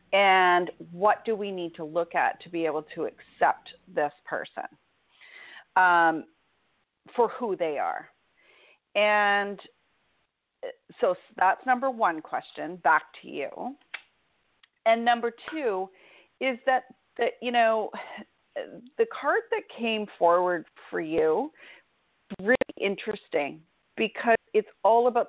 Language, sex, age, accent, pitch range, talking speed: English, female, 40-59, American, 185-245 Hz, 120 wpm